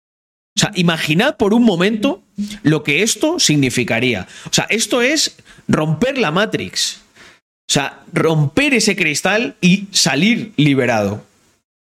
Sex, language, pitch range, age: male, Spanish, 140-215 Hz, 30-49